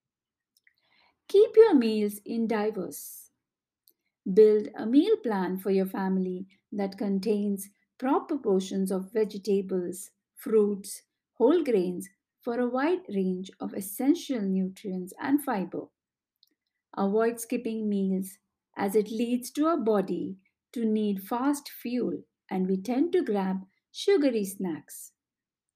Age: 50-69